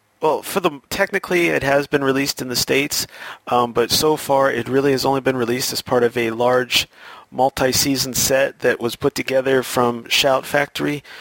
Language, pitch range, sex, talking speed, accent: English, 120-145 Hz, male, 185 wpm, American